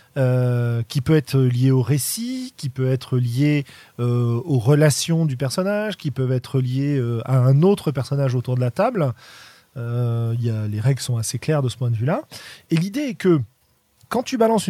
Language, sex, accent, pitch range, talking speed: French, male, French, 125-175 Hz, 200 wpm